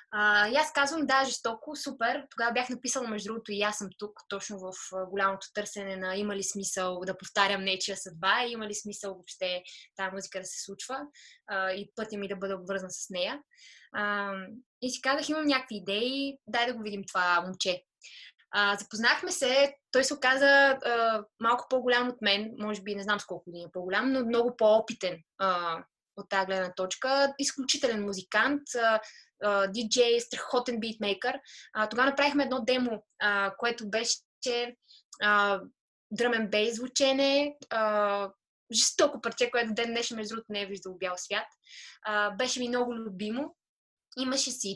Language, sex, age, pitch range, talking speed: Bulgarian, female, 20-39, 200-260 Hz, 155 wpm